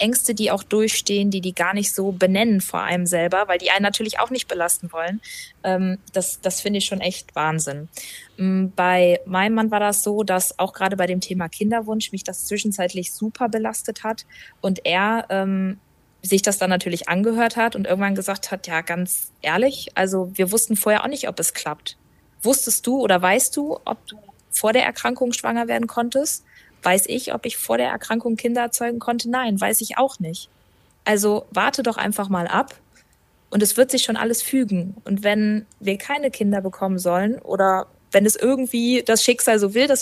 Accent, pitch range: German, 190-230 Hz